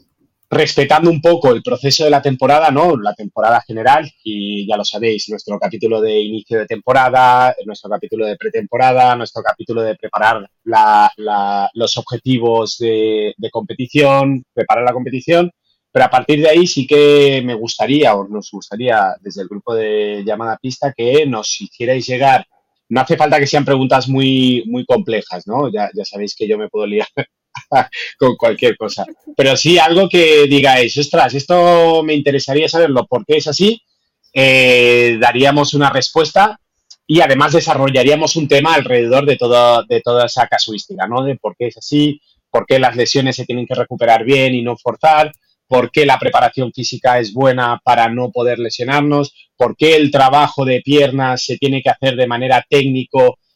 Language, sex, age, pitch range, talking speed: Spanish, male, 30-49, 120-145 Hz, 175 wpm